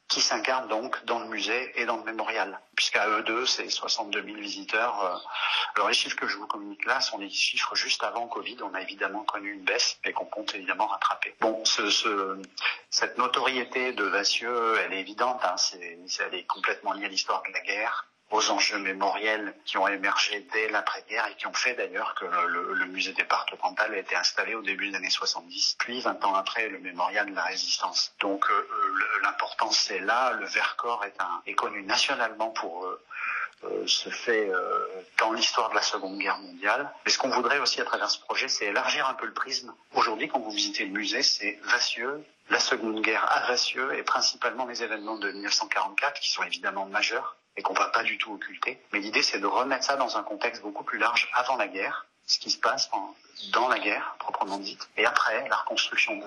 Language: English